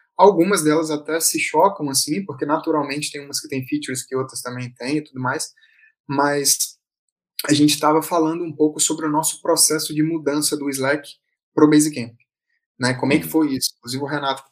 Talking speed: 200 wpm